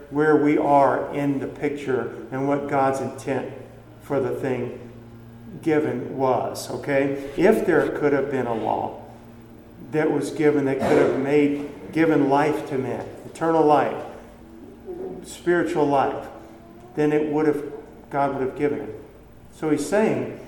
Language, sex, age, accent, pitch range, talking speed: English, male, 50-69, American, 125-155 Hz, 145 wpm